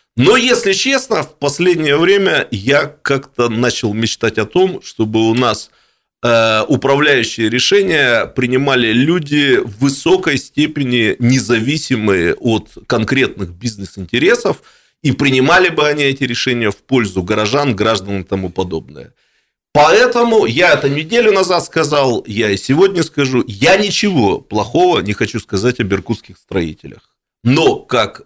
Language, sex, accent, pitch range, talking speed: Russian, male, native, 95-145 Hz, 130 wpm